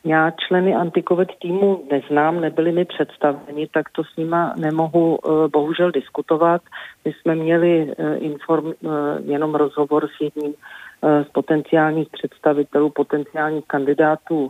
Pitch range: 145-160 Hz